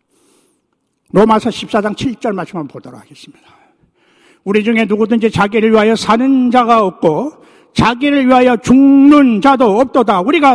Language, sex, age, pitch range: Korean, male, 60-79, 185-240 Hz